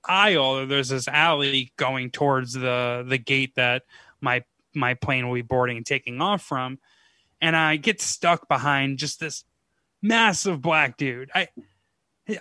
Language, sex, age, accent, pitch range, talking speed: English, male, 20-39, American, 140-180 Hz, 150 wpm